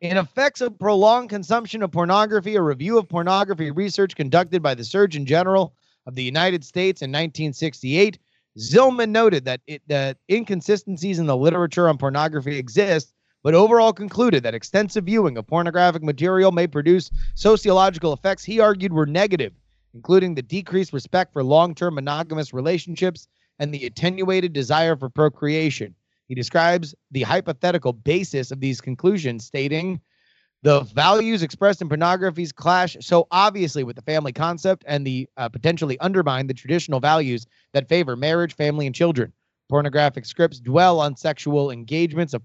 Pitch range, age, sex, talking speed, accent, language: 140-185 Hz, 30-49, male, 150 wpm, American, English